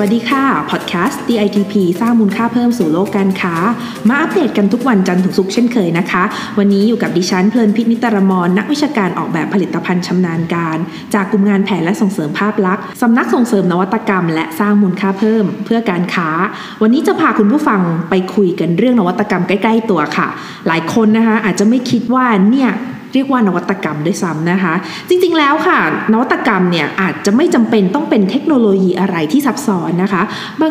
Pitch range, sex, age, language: 185-235 Hz, female, 20-39, Thai